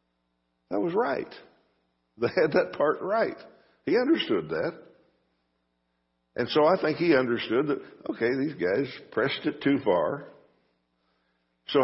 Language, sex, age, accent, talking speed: English, male, 60-79, American, 130 wpm